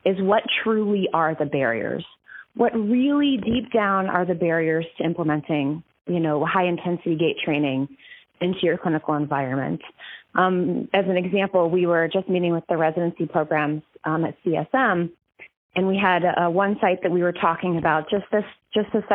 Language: English